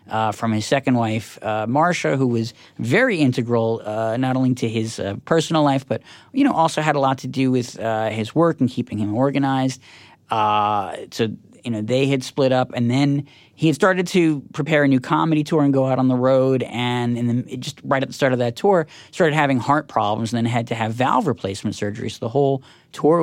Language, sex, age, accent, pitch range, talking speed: English, male, 40-59, American, 120-150 Hz, 230 wpm